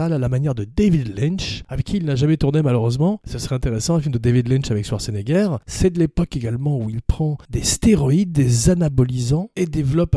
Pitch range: 125-170 Hz